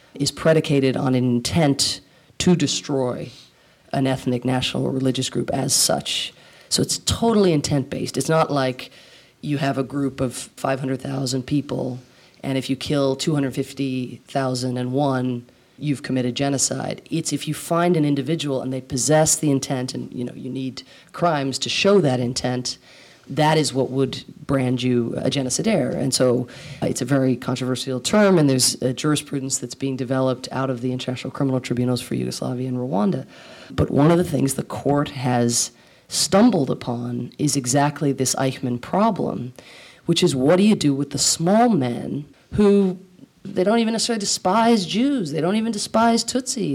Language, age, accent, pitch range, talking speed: English, 40-59, American, 130-160 Hz, 160 wpm